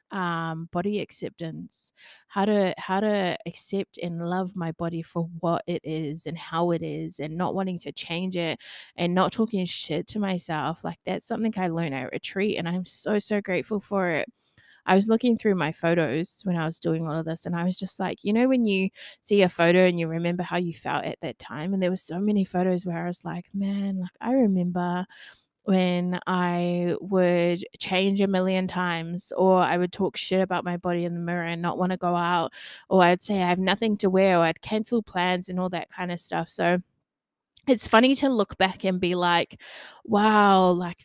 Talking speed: 215 wpm